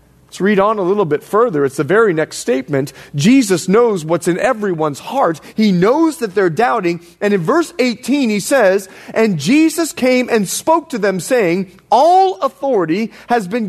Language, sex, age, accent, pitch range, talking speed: English, male, 30-49, American, 185-260 Hz, 180 wpm